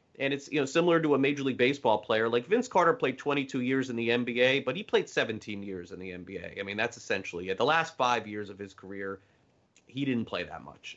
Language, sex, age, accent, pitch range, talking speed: English, male, 30-49, American, 110-135 Hz, 245 wpm